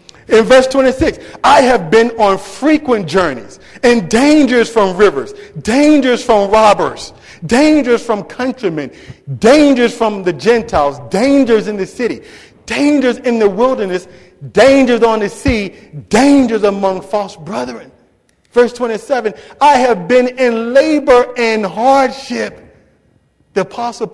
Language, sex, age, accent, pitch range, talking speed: English, male, 40-59, American, 200-255 Hz, 125 wpm